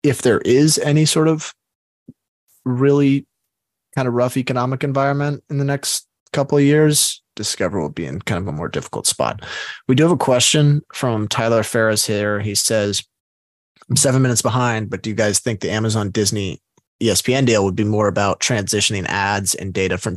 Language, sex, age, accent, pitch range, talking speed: English, male, 20-39, American, 100-135 Hz, 185 wpm